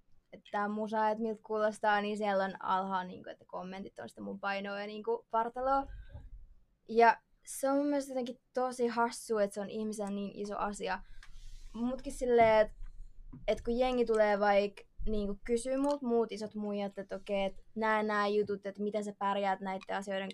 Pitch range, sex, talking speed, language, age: 195-235 Hz, female, 180 wpm, Finnish, 20-39